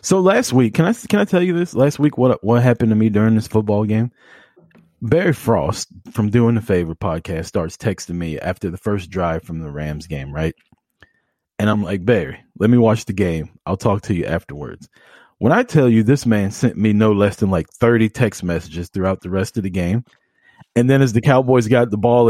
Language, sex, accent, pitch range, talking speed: English, male, American, 95-125 Hz, 225 wpm